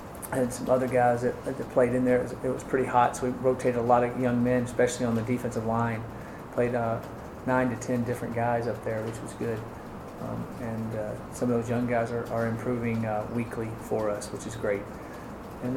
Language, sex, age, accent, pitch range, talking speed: English, male, 40-59, American, 115-125 Hz, 220 wpm